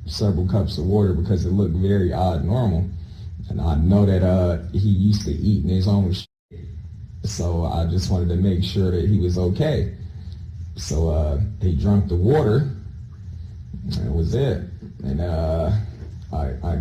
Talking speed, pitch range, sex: 170 wpm, 90-110 Hz, male